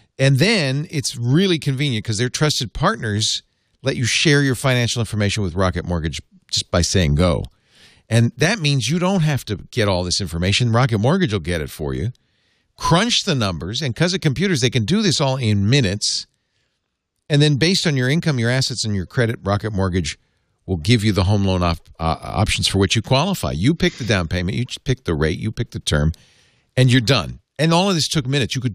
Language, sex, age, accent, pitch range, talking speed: English, male, 50-69, American, 100-145 Hz, 215 wpm